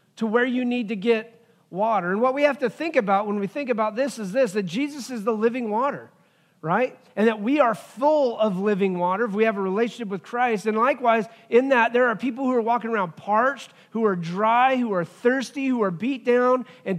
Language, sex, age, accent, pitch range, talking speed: English, male, 40-59, American, 190-240 Hz, 235 wpm